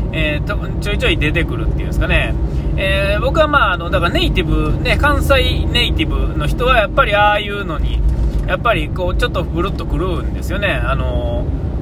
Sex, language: male, Japanese